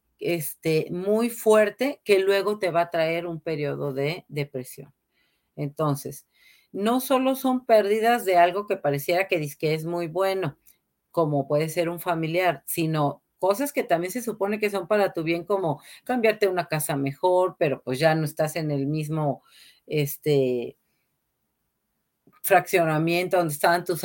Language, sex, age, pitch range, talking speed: Spanish, female, 40-59, 155-195 Hz, 150 wpm